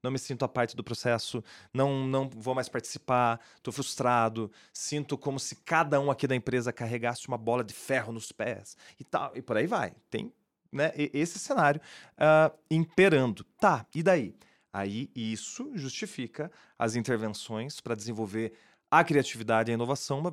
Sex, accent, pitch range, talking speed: male, Brazilian, 115-155 Hz, 160 wpm